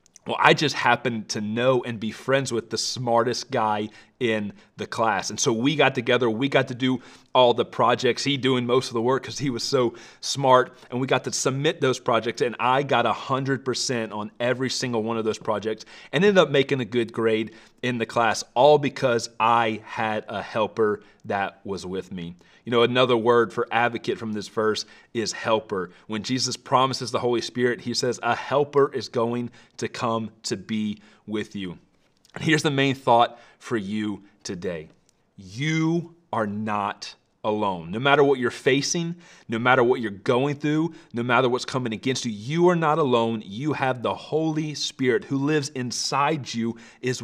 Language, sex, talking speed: English, male, 190 wpm